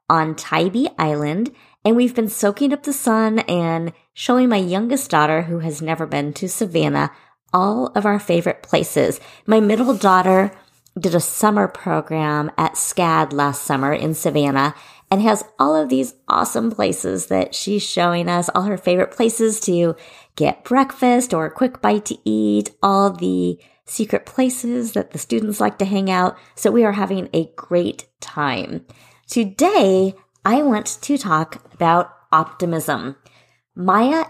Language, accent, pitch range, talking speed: English, American, 150-205 Hz, 155 wpm